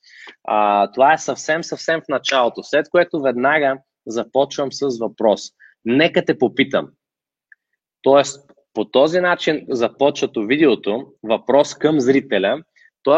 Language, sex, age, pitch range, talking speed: Bulgarian, male, 20-39, 115-150 Hz, 115 wpm